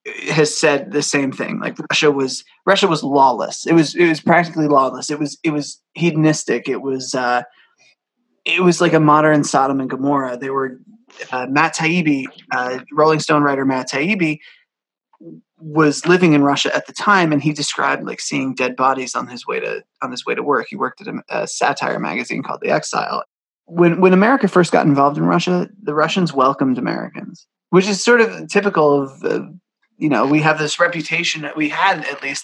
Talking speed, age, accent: 200 wpm, 20-39, American